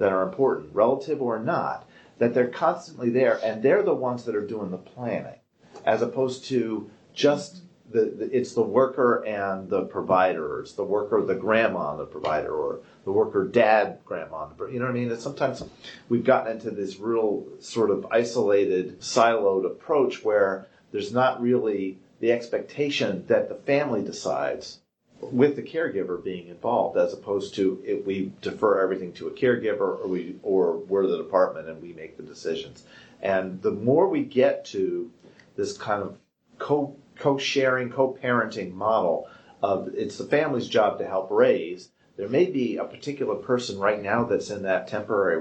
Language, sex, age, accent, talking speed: English, male, 40-59, American, 170 wpm